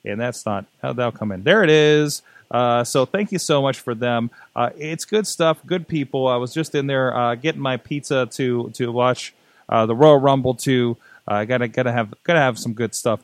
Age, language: 30-49, English